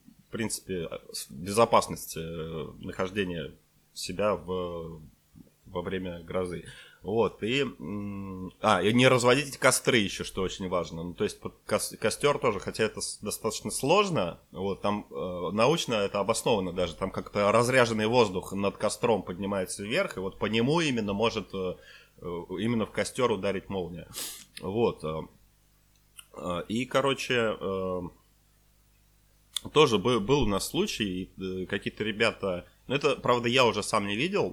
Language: Ukrainian